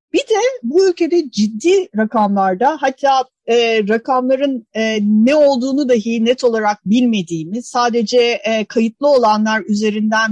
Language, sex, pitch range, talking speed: Turkish, female, 220-290 Hz, 120 wpm